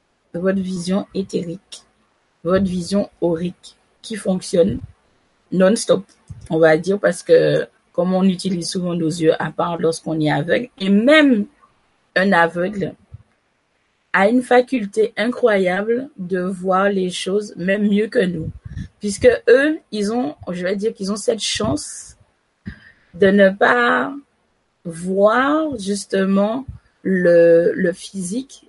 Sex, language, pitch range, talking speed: female, French, 185-245 Hz, 125 wpm